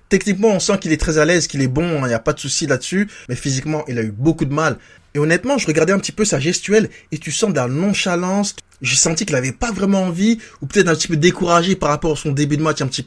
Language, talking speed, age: French, 290 wpm, 20-39